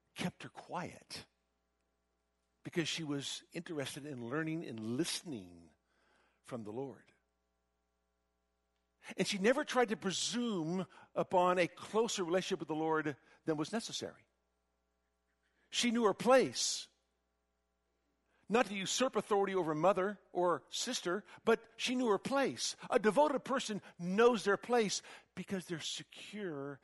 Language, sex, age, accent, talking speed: English, male, 60-79, American, 125 wpm